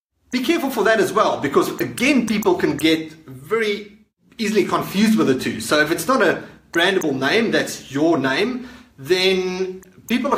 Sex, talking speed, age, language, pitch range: male, 170 wpm, 30-49, English, 155-210 Hz